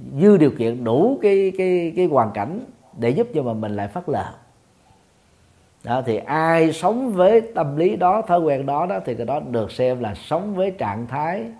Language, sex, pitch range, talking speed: Vietnamese, male, 115-160 Hz, 200 wpm